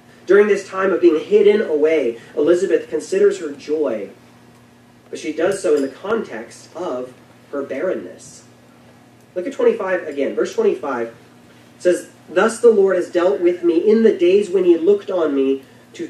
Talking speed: 165 wpm